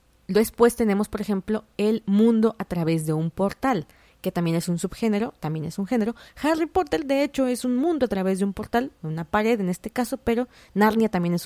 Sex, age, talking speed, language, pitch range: female, 20-39, 215 wpm, Spanish, 175-235 Hz